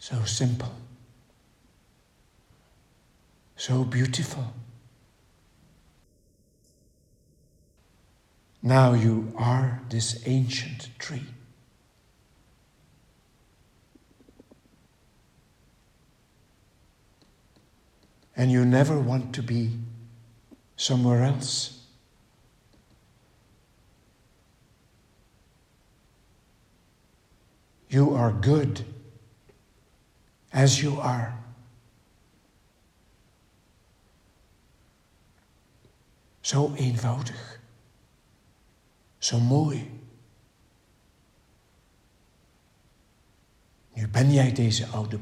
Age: 60-79